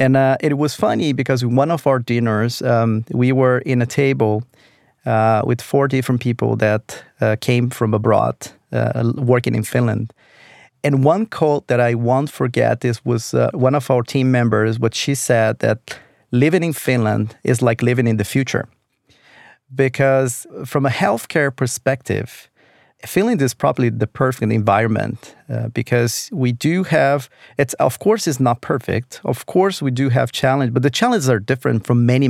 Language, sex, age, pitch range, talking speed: Finnish, male, 40-59, 115-140 Hz, 175 wpm